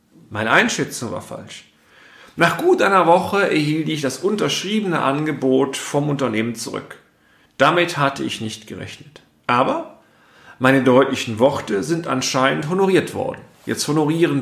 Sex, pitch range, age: male, 120-150 Hz, 40-59